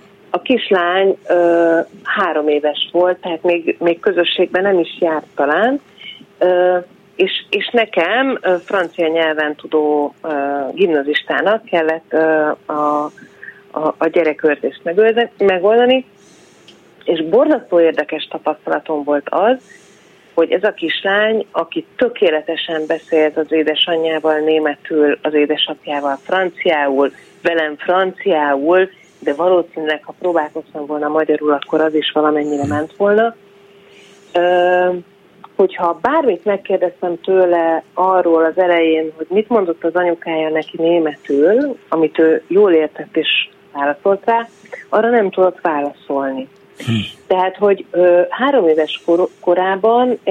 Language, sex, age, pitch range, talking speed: Hungarian, female, 40-59, 155-195 Hz, 110 wpm